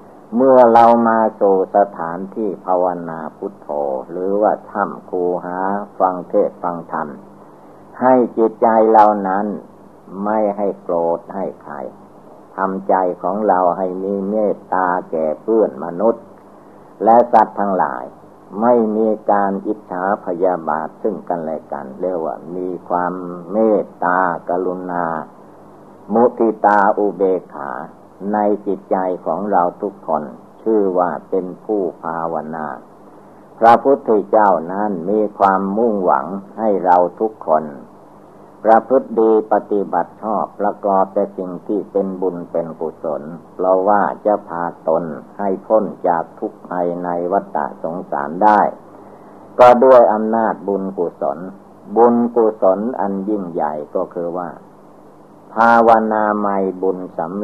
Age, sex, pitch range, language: 60-79, male, 90-105 Hz, Thai